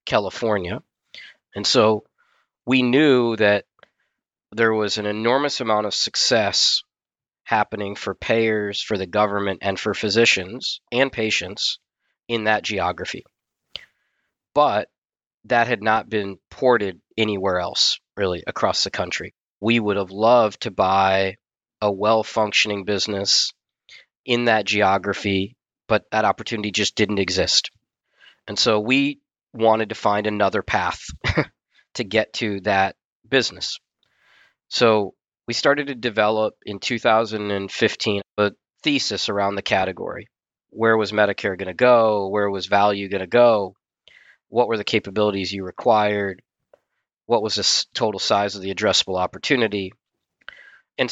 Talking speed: 130 wpm